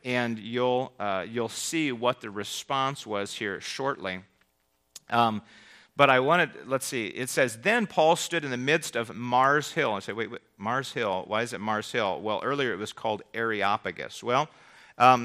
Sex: male